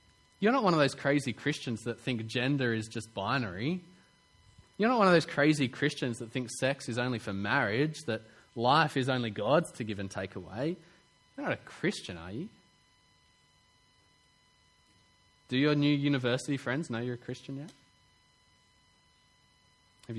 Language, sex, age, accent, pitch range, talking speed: English, male, 20-39, Australian, 110-145 Hz, 160 wpm